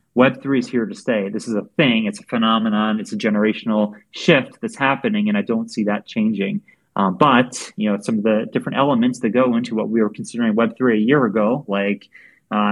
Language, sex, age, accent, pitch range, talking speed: English, male, 30-49, American, 110-160 Hz, 215 wpm